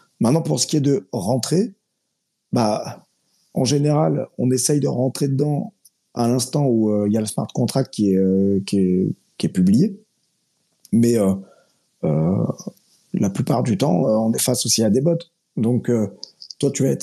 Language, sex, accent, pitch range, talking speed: French, male, French, 120-160 Hz, 185 wpm